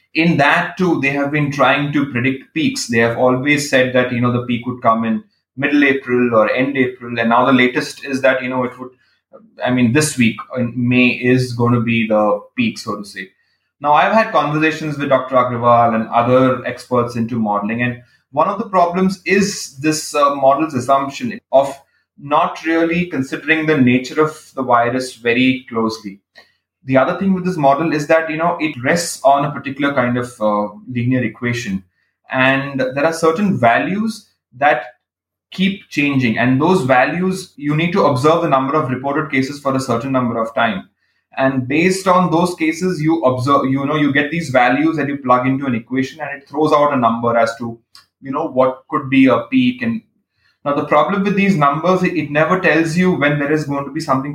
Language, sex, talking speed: English, male, 200 wpm